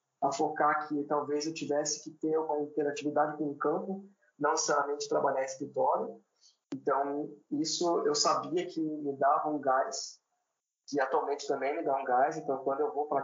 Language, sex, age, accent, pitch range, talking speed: Portuguese, male, 20-39, Brazilian, 140-160 Hz, 170 wpm